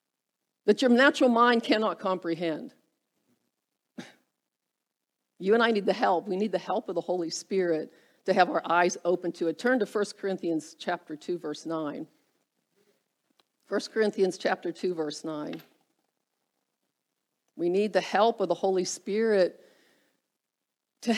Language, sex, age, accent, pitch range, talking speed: English, female, 50-69, American, 185-230 Hz, 140 wpm